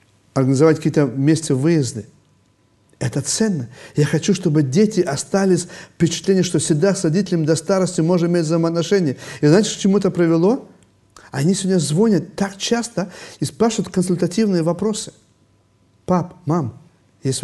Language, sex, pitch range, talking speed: Russian, male, 120-190 Hz, 135 wpm